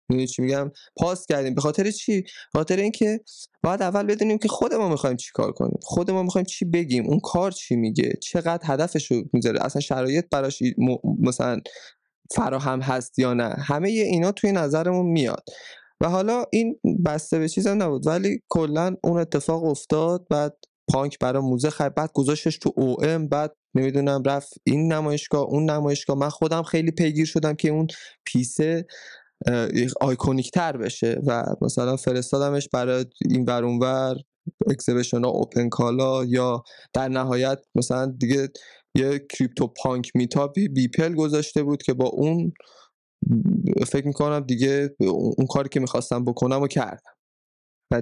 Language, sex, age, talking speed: Persian, male, 20-39, 155 wpm